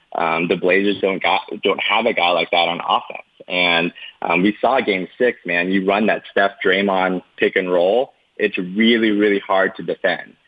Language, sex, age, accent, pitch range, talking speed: English, male, 20-39, American, 90-105 Hz, 195 wpm